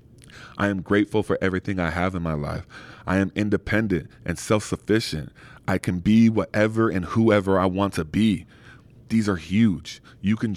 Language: English